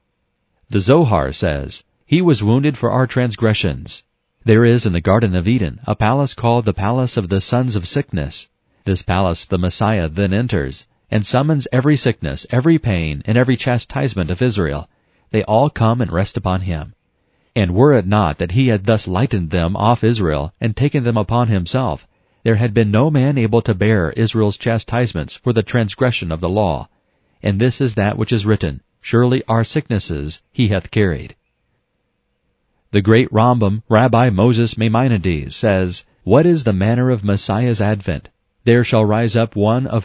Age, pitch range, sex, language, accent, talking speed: 40-59, 95-120 Hz, male, English, American, 175 wpm